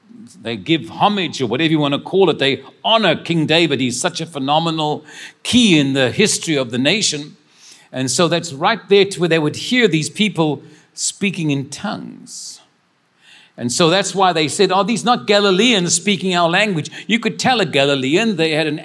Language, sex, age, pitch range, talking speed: English, male, 50-69, 145-185 Hz, 195 wpm